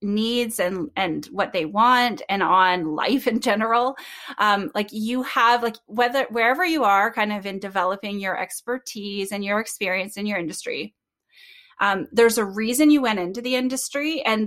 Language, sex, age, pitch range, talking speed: English, female, 20-39, 205-265 Hz, 175 wpm